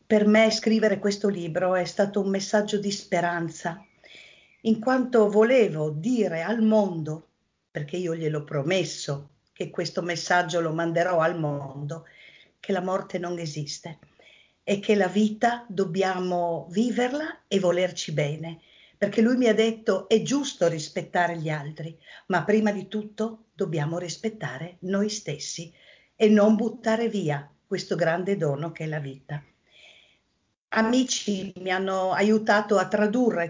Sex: female